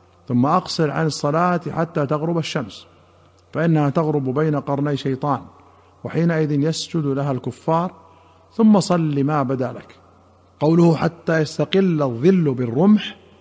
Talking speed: 115 wpm